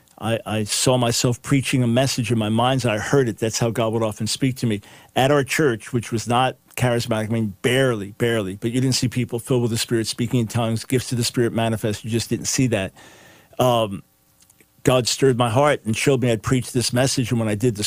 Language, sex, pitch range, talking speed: English, male, 110-125 Hz, 240 wpm